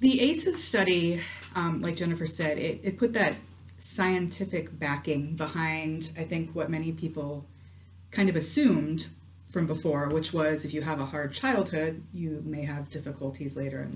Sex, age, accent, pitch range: female, 30-49, American, 140-165 Hz